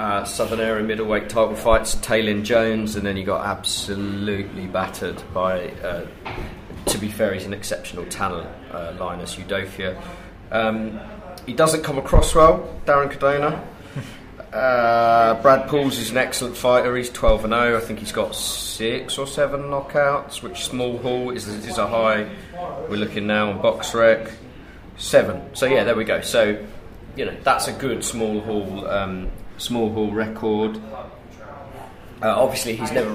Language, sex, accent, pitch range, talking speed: English, male, British, 105-130 Hz, 155 wpm